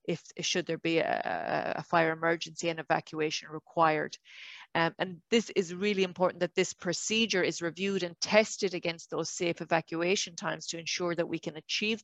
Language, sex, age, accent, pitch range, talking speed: English, female, 30-49, Irish, 165-195 Hz, 175 wpm